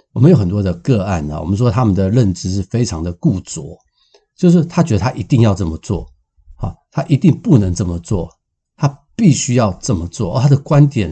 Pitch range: 95-130 Hz